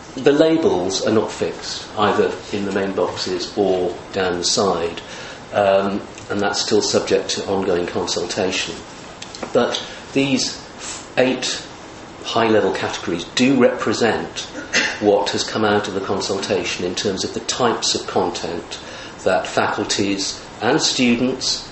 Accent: British